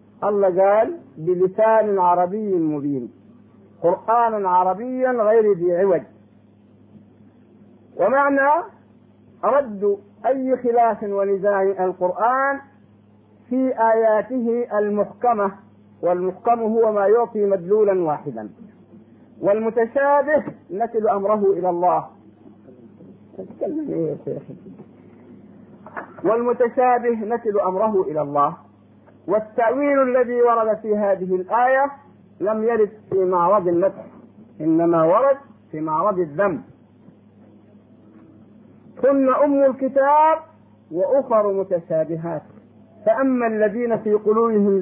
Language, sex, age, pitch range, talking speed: Arabic, male, 50-69, 175-235 Hz, 80 wpm